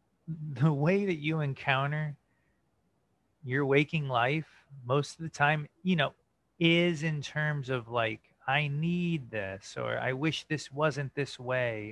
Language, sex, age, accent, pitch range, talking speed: English, male, 30-49, American, 120-160 Hz, 145 wpm